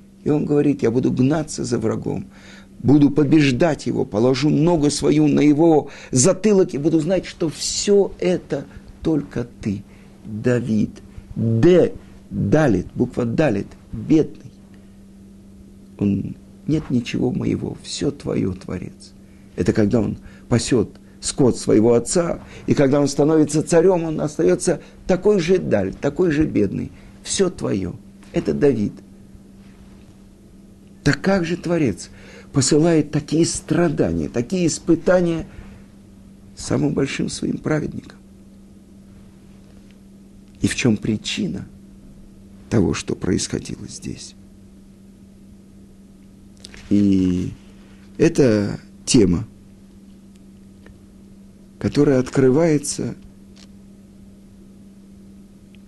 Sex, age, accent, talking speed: male, 50-69, native, 90 wpm